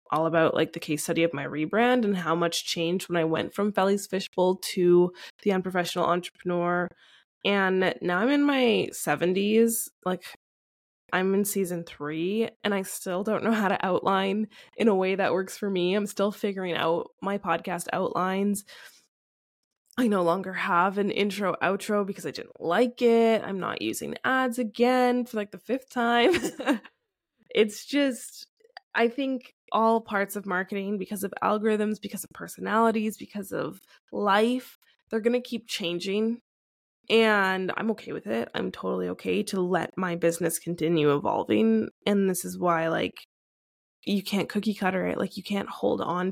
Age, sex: 10-29, female